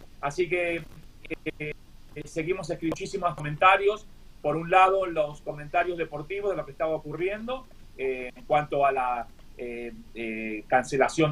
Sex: male